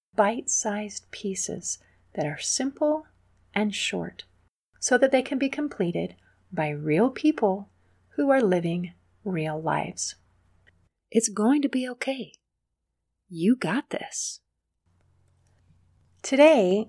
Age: 40-59